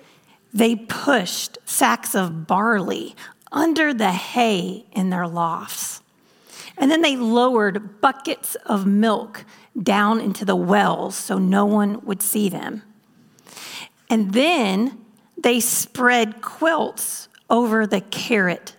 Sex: female